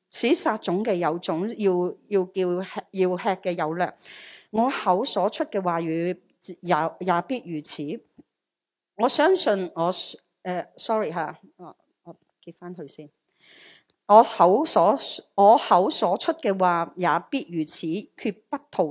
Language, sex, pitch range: Chinese, female, 170-220 Hz